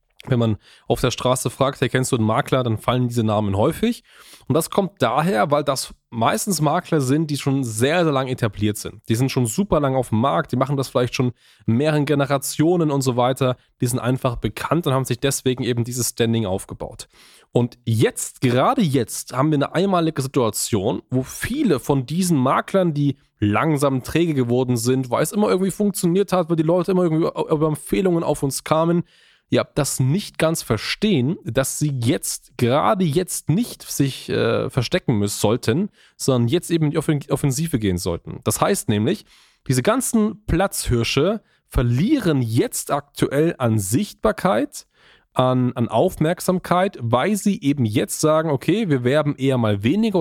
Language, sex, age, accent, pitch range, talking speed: German, male, 10-29, German, 120-160 Hz, 180 wpm